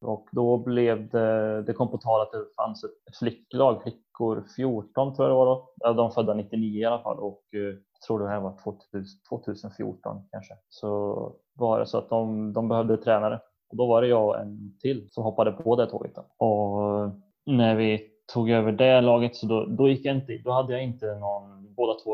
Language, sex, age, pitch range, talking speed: Swedish, male, 20-39, 100-120 Hz, 205 wpm